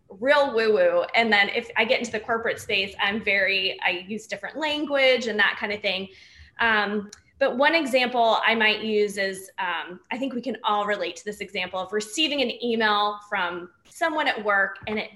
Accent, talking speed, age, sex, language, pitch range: American, 200 wpm, 20-39, female, English, 195-250 Hz